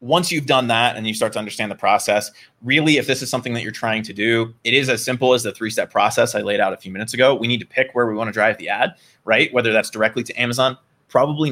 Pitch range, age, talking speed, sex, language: 115-135 Hz, 20-39, 280 wpm, male, English